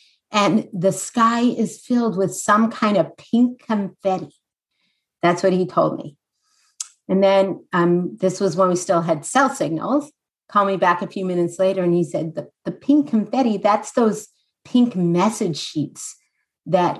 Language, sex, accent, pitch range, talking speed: English, female, American, 180-220 Hz, 165 wpm